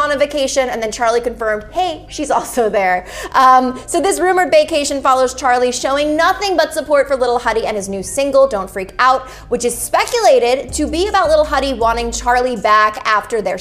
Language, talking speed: English, 200 wpm